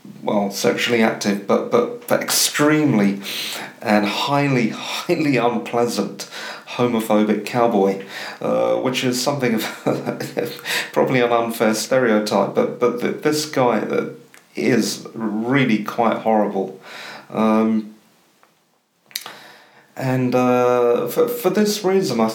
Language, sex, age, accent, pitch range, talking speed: English, male, 40-59, British, 105-130 Hz, 100 wpm